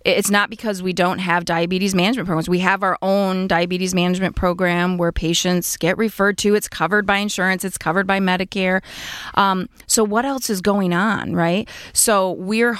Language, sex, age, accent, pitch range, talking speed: English, female, 30-49, American, 180-210 Hz, 185 wpm